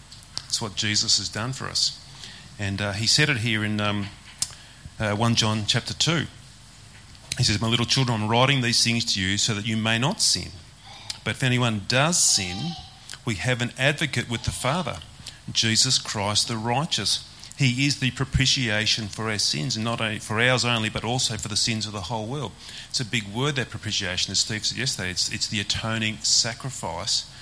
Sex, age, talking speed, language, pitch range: male, 30-49, 190 wpm, English, 105-130 Hz